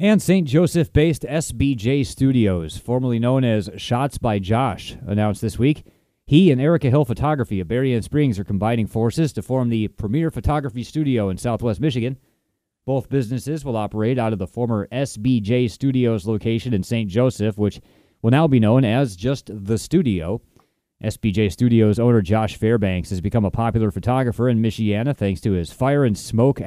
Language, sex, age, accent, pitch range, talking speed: English, male, 30-49, American, 100-130 Hz, 165 wpm